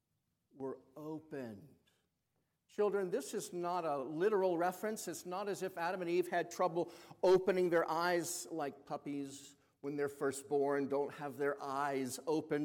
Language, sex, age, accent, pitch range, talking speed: English, male, 60-79, American, 140-180 Hz, 150 wpm